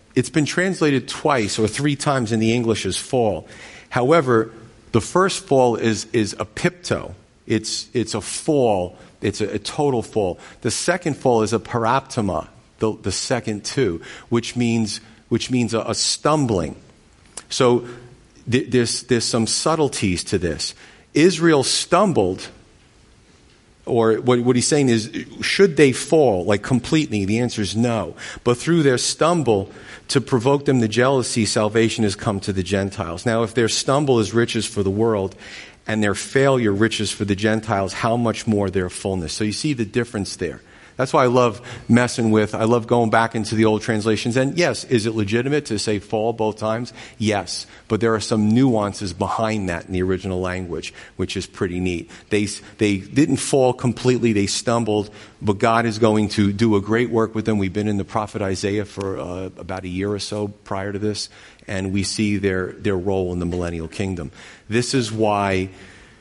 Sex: male